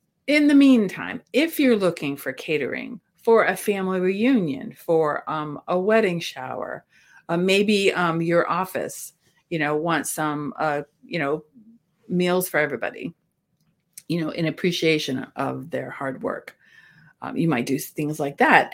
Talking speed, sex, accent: 150 wpm, female, American